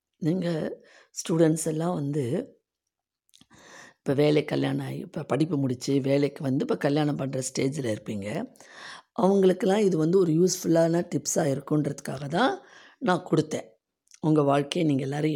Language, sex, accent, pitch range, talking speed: Tamil, female, native, 140-180 Hz, 125 wpm